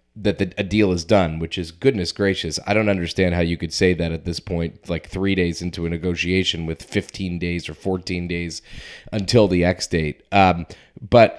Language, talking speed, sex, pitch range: English, 205 wpm, male, 85-110 Hz